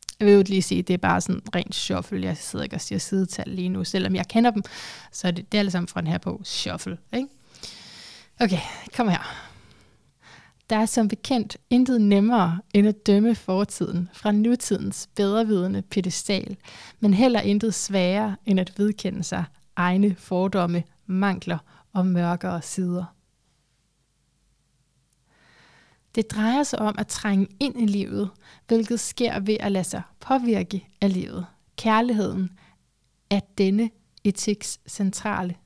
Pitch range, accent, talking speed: 185-220 Hz, native, 150 wpm